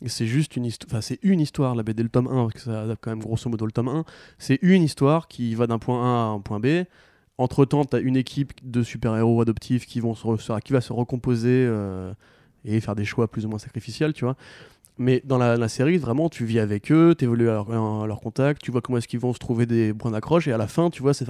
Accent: French